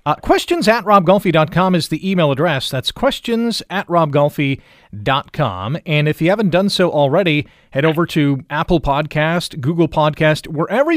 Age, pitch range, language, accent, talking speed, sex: 30-49, 140-190 Hz, English, American, 150 wpm, male